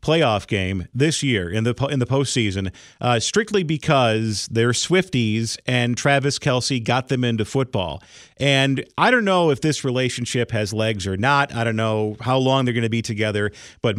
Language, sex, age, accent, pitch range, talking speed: English, male, 40-59, American, 115-155 Hz, 185 wpm